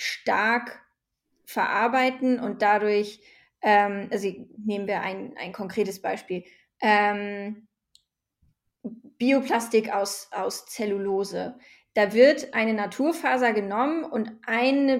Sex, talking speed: female, 90 wpm